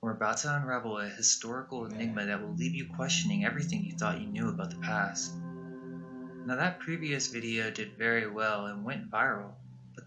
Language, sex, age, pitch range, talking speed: English, male, 20-39, 110-175 Hz, 185 wpm